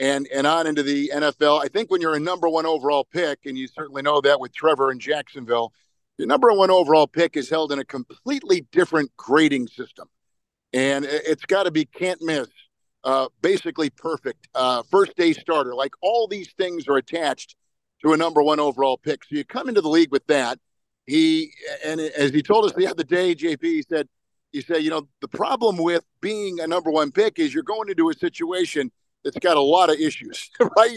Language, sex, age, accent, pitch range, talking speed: English, male, 50-69, American, 140-190 Hz, 205 wpm